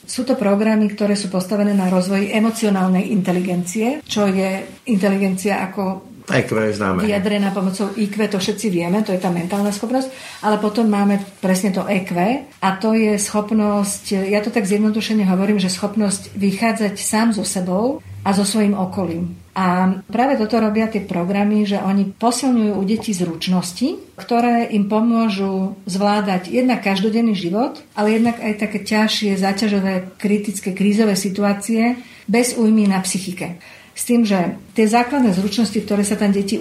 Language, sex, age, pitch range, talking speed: Slovak, female, 50-69, 190-220 Hz, 155 wpm